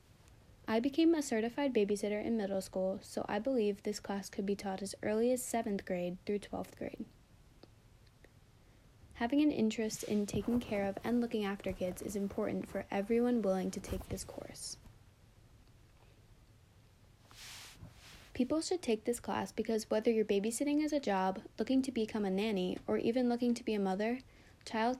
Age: 20-39